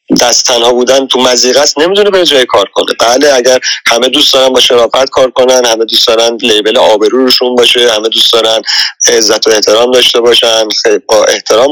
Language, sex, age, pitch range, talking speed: English, male, 30-49, 115-145 Hz, 180 wpm